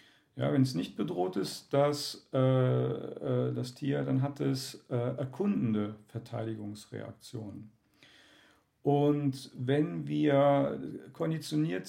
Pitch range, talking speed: 115-140 Hz, 100 wpm